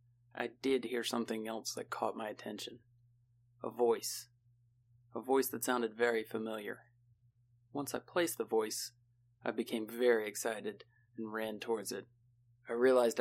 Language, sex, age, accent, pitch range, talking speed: English, male, 30-49, American, 115-125 Hz, 145 wpm